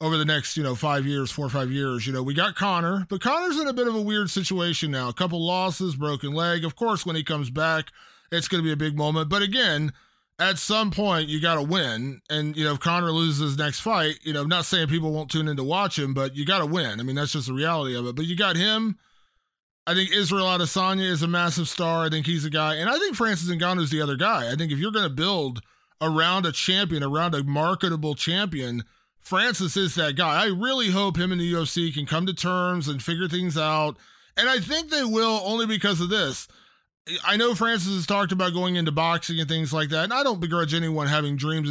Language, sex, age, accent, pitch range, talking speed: English, male, 20-39, American, 150-185 Hz, 250 wpm